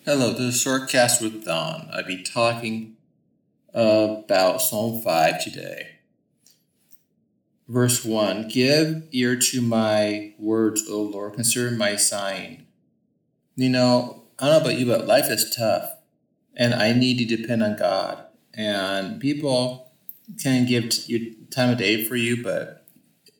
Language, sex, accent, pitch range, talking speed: English, male, American, 110-125 Hz, 140 wpm